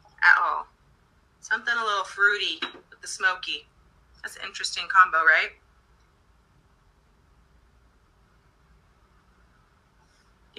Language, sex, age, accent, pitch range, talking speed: English, female, 30-49, American, 180-255 Hz, 80 wpm